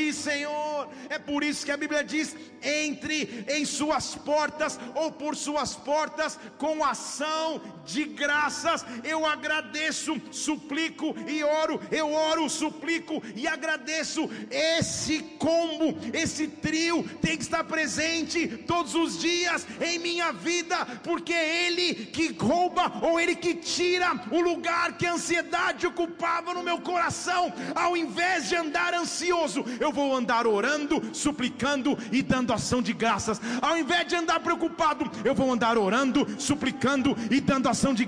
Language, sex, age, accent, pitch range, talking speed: Portuguese, male, 50-69, Brazilian, 280-335 Hz, 145 wpm